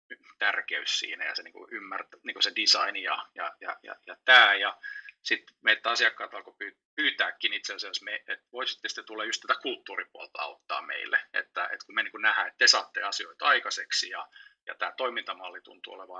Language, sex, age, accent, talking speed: English, male, 30-49, Finnish, 175 wpm